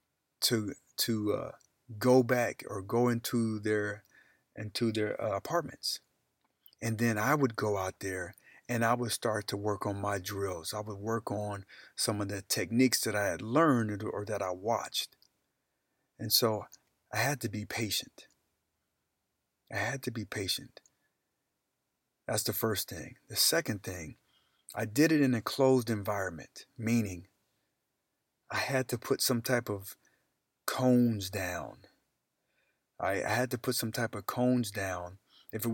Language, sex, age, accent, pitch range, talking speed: English, male, 40-59, American, 105-125 Hz, 155 wpm